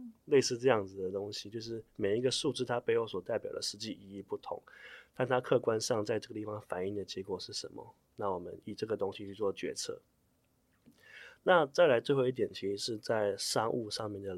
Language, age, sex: Chinese, 20-39, male